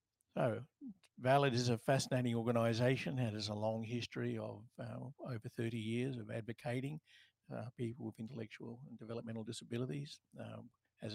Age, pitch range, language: 50-69, 110-130 Hz, English